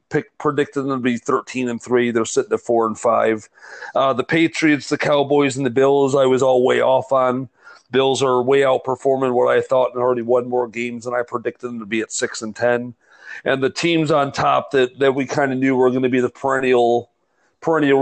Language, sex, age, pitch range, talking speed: English, male, 40-59, 120-140 Hz, 225 wpm